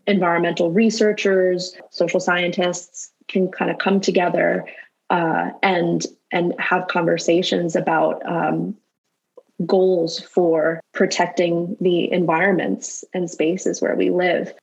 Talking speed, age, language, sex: 105 wpm, 20-39, English, female